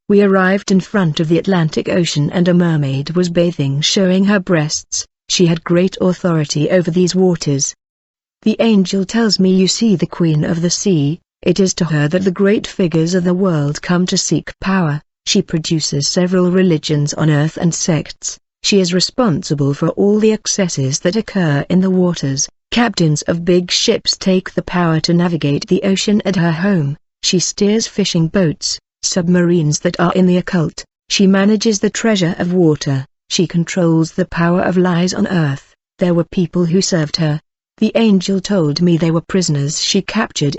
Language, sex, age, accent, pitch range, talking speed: English, female, 40-59, British, 160-195 Hz, 180 wpm